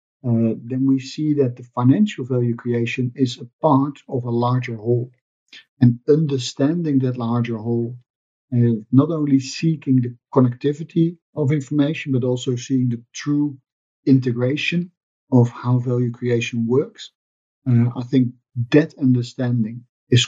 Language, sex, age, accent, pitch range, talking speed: English, male, 50-69, Dutch, 120-135 Hz, 135 wpm